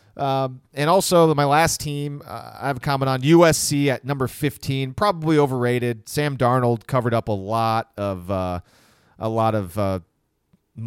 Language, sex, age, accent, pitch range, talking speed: English, male, 30-49, American, 105-135 Hz, 165 wpm